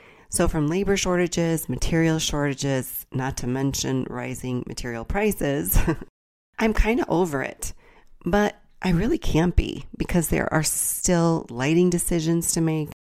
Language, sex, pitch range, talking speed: English, female, 135-170 Hz, 135 wpm